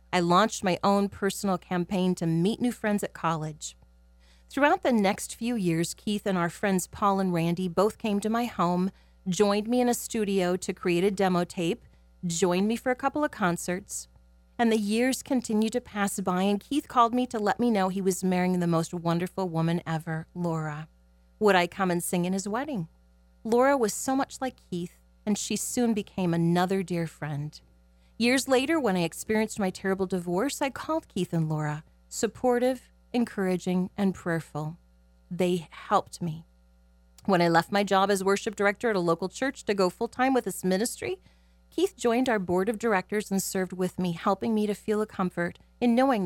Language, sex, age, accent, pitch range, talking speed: English, female, 30-49, American, 170-220 Hz, 190 wpm